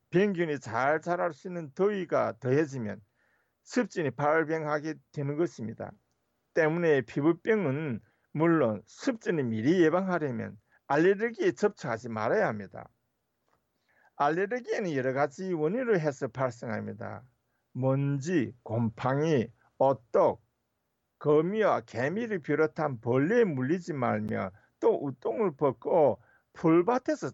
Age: 50-69